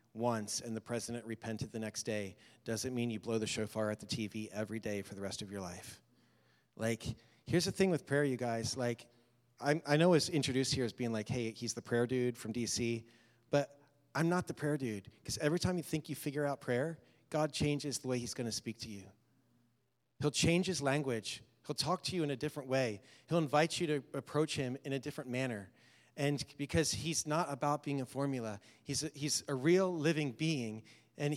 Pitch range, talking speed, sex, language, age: 120-150 Hz, 215 wpm, male, English, 30-49